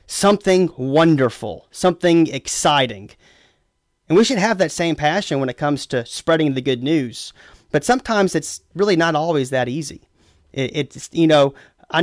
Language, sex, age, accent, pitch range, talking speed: English, male, 30-49, American, 135-170 Hz, 155 wpm